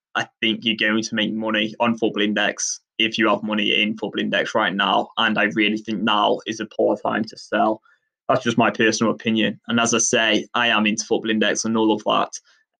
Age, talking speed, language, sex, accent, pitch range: 20-39, 225 wpm, English, male, British, 105-115 Hz